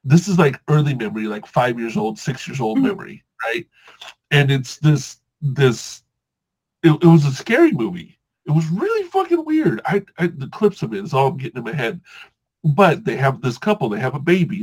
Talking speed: 210 wpm